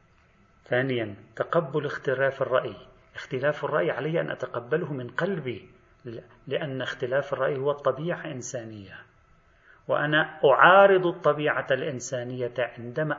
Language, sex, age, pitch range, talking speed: Arabic, male, 40-59, 115-140 Hz, 100 wpm